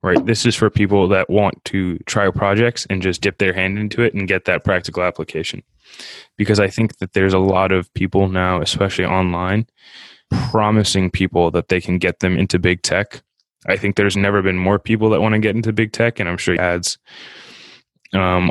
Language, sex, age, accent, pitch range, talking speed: English, male, 10-29, American, 90-105 Hz, 205 wpm